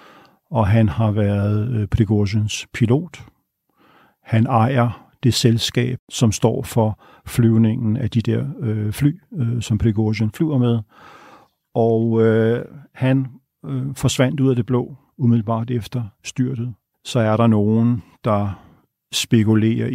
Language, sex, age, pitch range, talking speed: Danish, male, 50-69, 105-120 Hz, 115 wpm